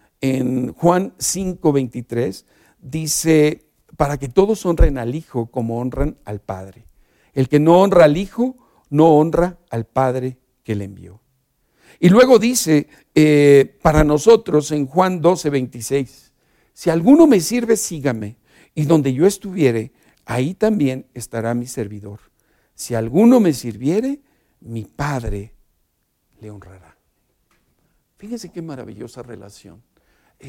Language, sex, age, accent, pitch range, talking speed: Spanish, male, 50-69, Mexican, 125-180 Hz, 130 wpm